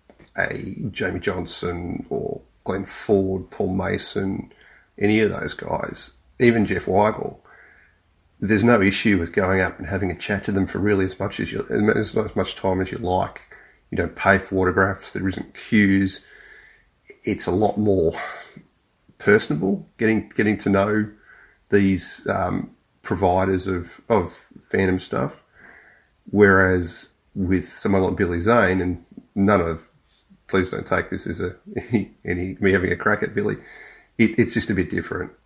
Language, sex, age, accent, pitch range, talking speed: English, male, 30-49, Australian, 90-105 Hz, 155 wpm